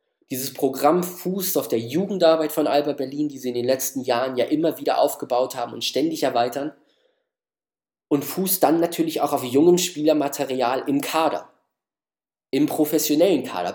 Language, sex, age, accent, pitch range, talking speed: German, male, 20-39, German, 125-180 Hz, 155 wpm